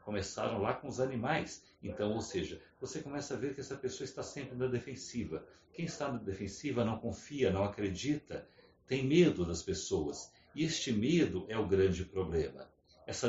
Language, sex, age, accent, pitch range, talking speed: Portuguese, male, 60-79, Brazilian, 100-130 Hz, 175 wpm